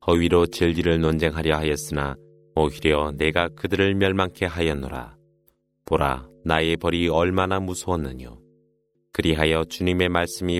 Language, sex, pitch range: Korean, male, 80-90 Hz